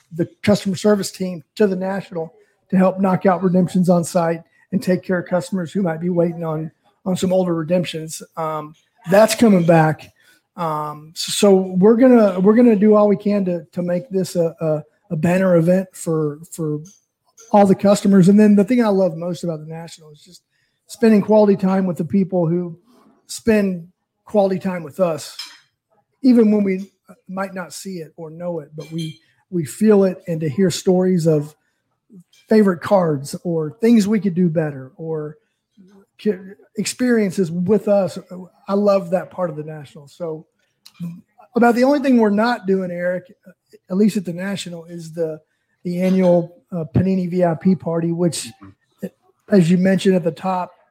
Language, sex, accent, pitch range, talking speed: English, male, American, 165-200 Hz, 175 wpm